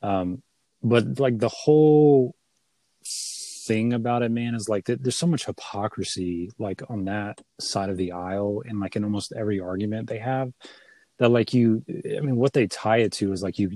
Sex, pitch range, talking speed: male, 100-120 Hz, 190 wpm